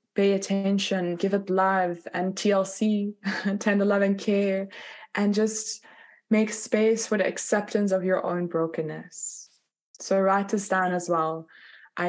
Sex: female